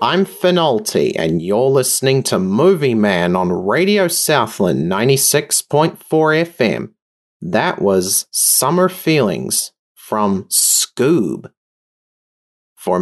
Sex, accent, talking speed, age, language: male, Australian, 90 wpm, 30-49, English